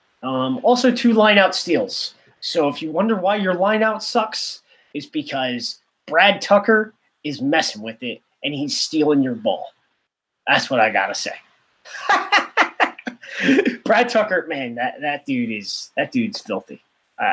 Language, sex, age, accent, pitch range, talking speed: English, male, 30-49, American, 145-245 Hz, 150 wpm